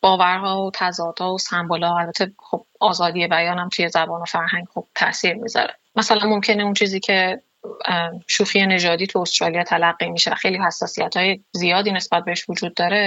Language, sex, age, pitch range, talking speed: Persian, female, 30-49, 175-210 Hz, 155 wpm